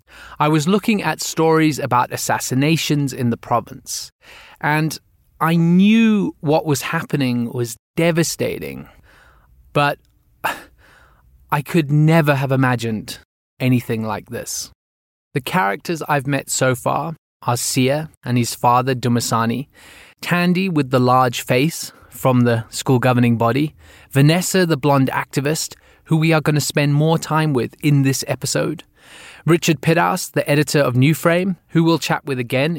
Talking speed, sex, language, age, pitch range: 140 wpm, male, English, 20-39, 125-155 Hz